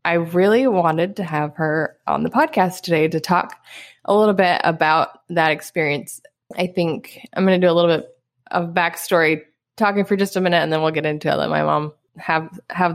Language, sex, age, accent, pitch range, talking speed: English, female, 20-39, American, 155-190 Hz, 210 wpm